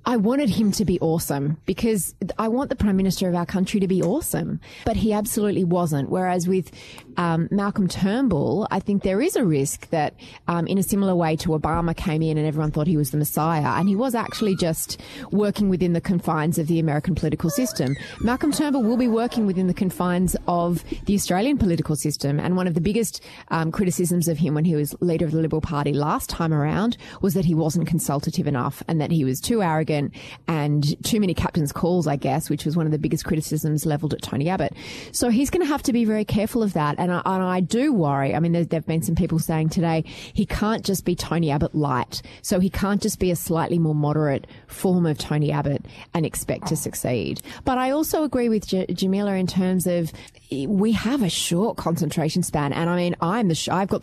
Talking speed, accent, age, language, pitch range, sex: 225 wpm, Australian, 20-39, English, 155-195 Hz, female